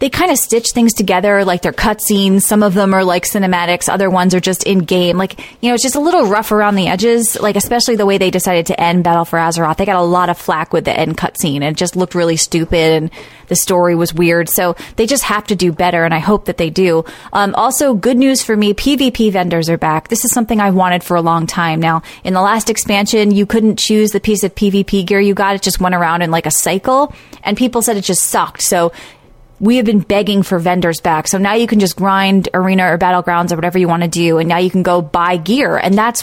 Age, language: 20-39, English